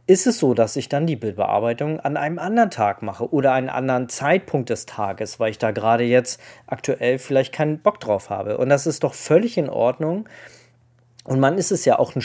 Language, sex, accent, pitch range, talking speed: German, male, German, 125-170 Hz, 215 wpm